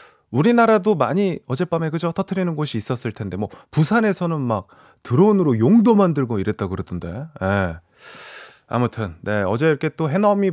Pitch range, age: 110-170 Hz, 30-49